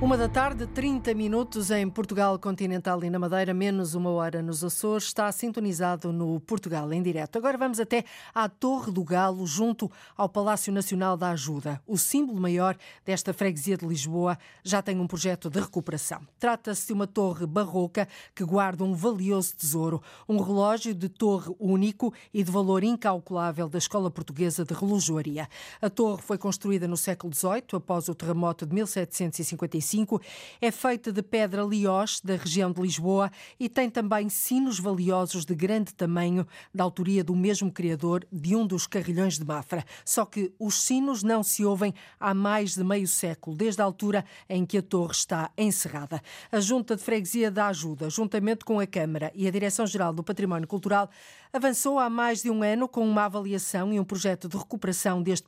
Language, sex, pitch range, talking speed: Portuguese, female, 175-210 Hz, 175 wpm